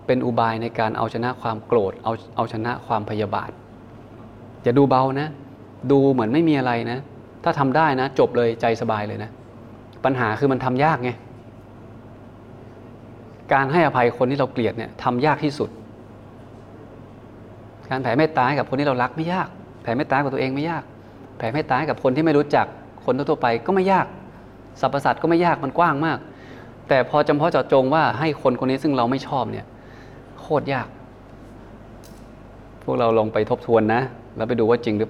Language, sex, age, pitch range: Thai, male, 20-39, 115-130 Hz